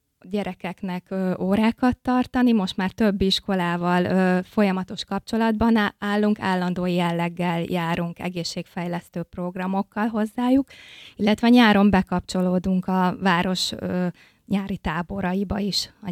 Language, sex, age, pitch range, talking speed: Hungarian, female, 20-39, 185-215 Hz, 95 wpm